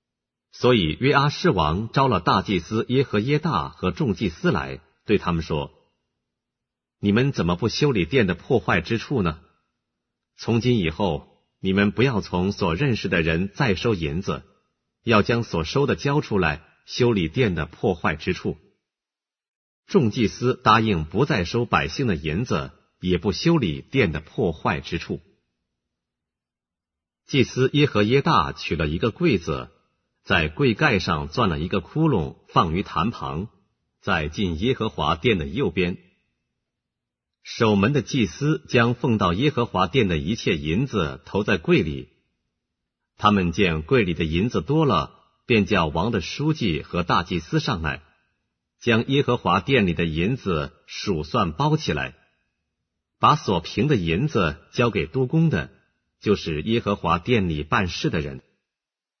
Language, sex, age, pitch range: English, male, 50-69, 80-125 Hz